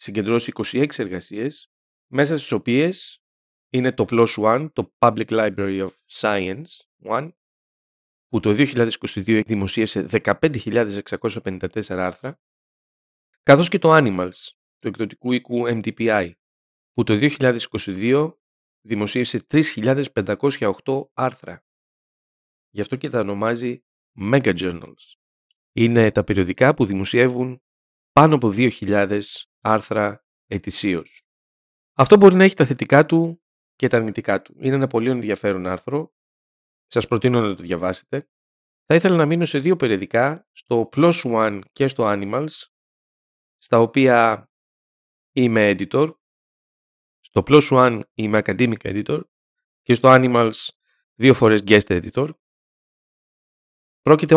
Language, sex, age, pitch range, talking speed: Greek, male, 40-59, 105-135 Hz, 115 wpm